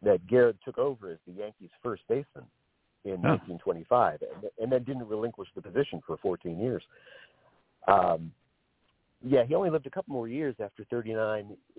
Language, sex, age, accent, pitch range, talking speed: English, male, 40-59, American, 100-150 Hz, 165 wpm